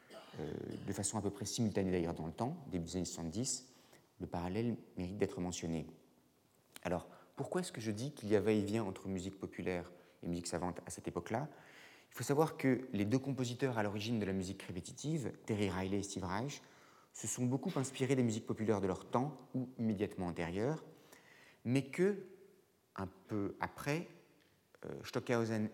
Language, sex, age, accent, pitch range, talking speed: French, male, 30-49, French, 90-125 Hz, 180 wpm